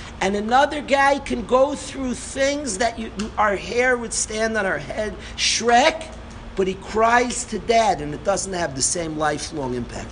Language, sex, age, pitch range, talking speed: English, male, 50-69, 215-280 Hz, 185 wpm